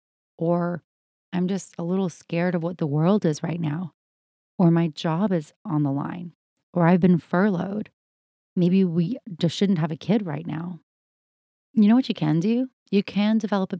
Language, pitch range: English, 155-185 Hz